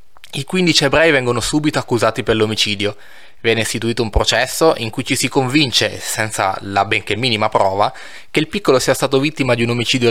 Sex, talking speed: male, 185 wpm